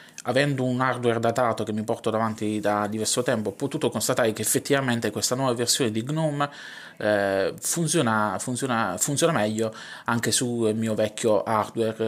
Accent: native